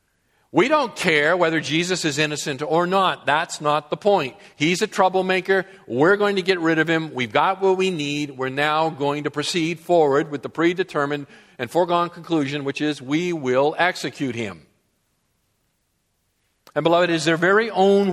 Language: English